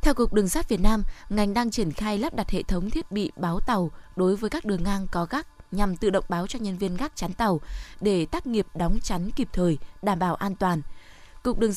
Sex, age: female, 10-29